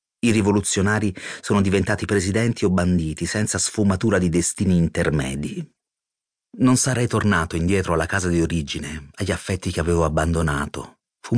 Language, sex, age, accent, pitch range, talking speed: Italian, male, 40-59, native, 85-115 Hz, 135 wpm